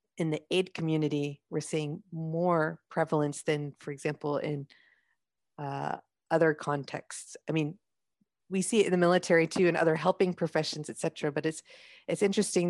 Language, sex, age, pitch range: English, female, 40-59, 155-185 Hz